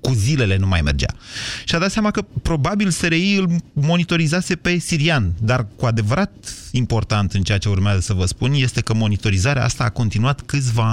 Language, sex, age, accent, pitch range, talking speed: Romanian, male, 30-49, native, 100-135 Hz, 185 wpm